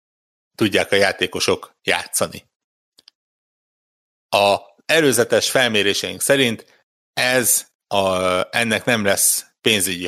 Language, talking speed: Hungarian, 85 wpm